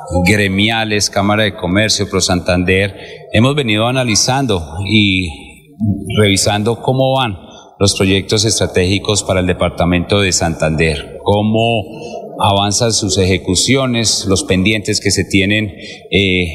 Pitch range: 95-110 Hz